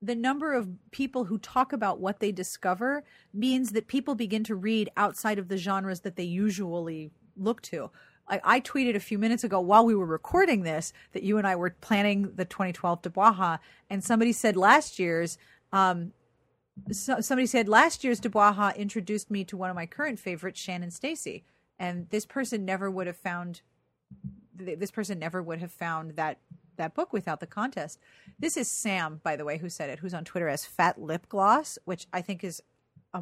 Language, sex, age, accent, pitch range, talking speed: English, female, 30-49, American, 180-230 Hz, 195 wpm